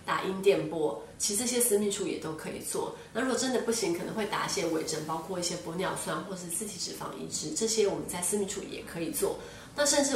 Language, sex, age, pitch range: Chinese, female, 20-39, 175-230 Hz